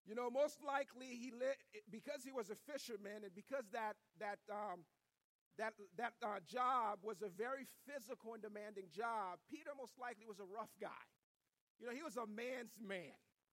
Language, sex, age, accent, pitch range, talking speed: English, male, 50-69, American, 210-260 Hz, 180 wpm